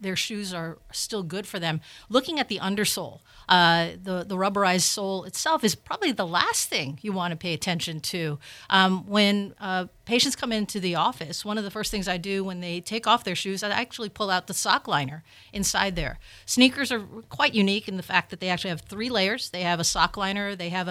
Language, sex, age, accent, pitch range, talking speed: English, female, 50-69, American, 175-210 Hz, 225 wpm